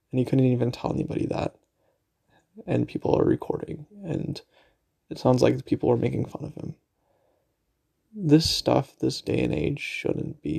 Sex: male